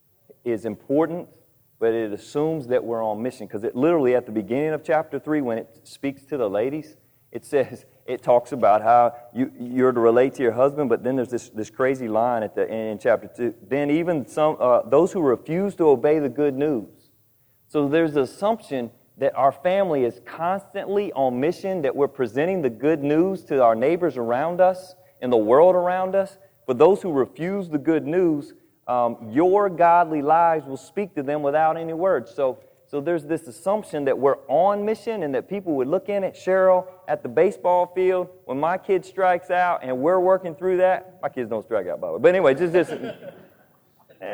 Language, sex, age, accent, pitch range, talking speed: English, male, 30-49, American, 130-185 Hz, 205 wpm